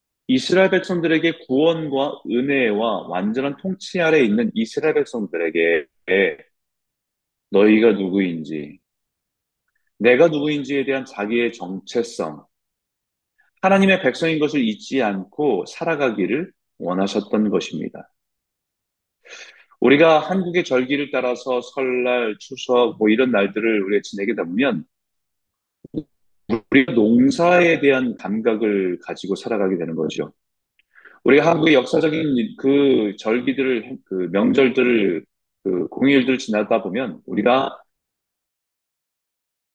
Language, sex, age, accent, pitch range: Korean, male, 30-49, native, 115-170 Hz